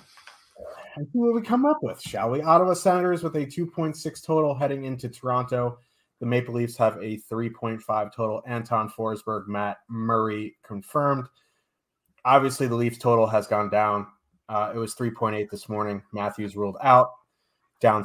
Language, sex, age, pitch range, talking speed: English, male, 30-49, 110-130 Hz, 155 wpm